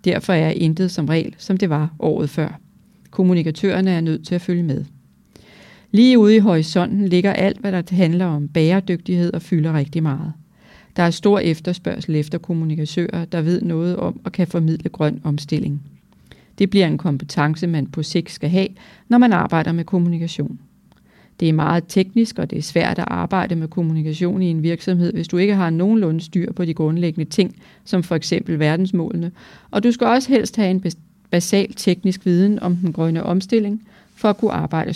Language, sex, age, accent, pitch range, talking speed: Danish, female, 40-59, native, 160-195 Hz, 190 wpm